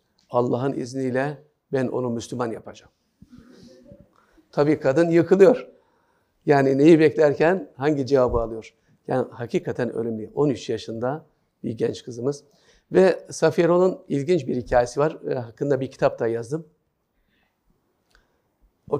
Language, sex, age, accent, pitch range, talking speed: Turkish, male, 50-69, native, 130-160 Hz, 110 wpm